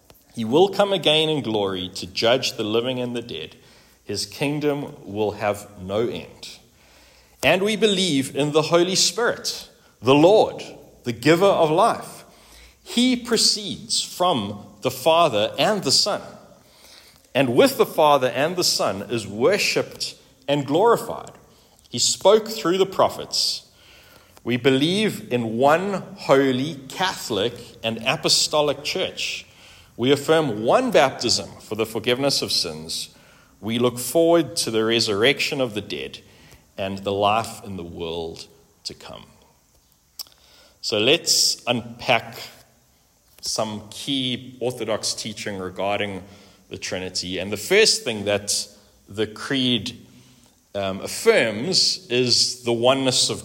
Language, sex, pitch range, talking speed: English, male, 105-150 Hz, 130 wpm